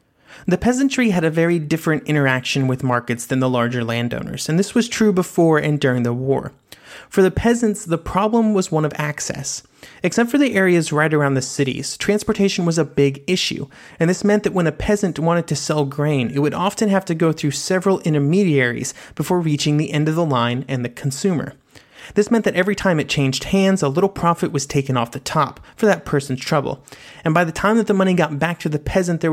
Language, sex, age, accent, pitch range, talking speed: English, male, 30-49, American, 140-185 Hz, 220 wpm